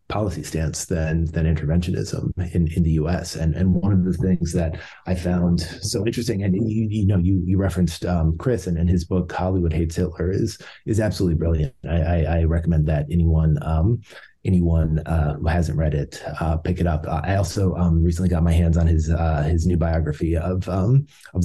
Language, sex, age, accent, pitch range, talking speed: English, male, 30-49, American, 80-95 Hz, 205 wpm